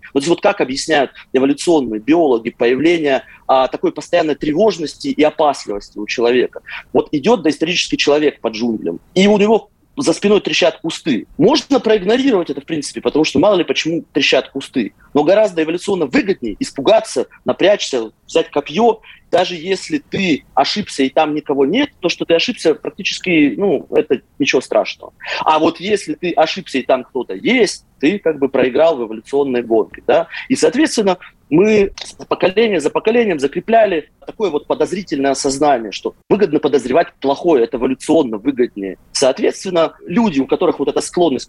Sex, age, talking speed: male, 30-49, 155 wpm